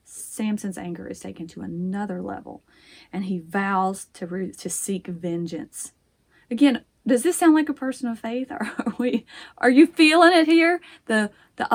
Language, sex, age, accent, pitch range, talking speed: English, female, 30-49, American, 180-245 Hz, 175 wpm